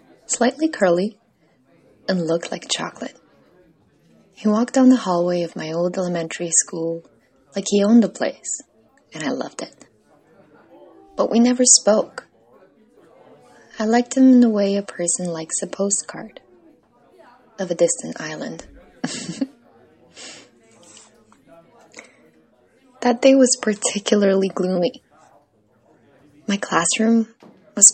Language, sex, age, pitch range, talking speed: English, female, 20-39, 175-245 Hz, 110 wpm